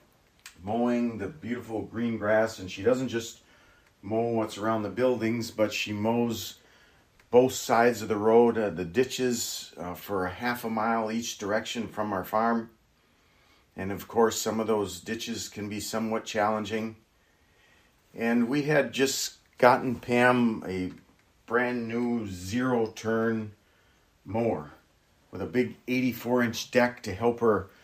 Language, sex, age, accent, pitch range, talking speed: English, male, 40-59, American, 105-125 Hz, 140 wpm